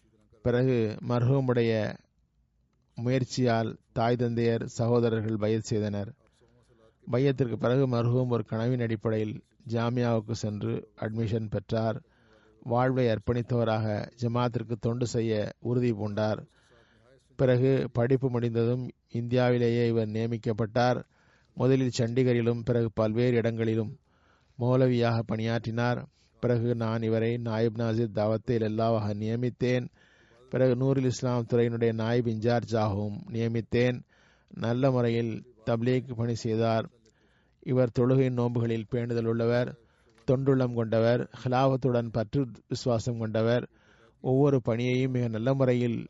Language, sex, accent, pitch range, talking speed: Tamil, male, native, 115-125 Hz, 95 wpm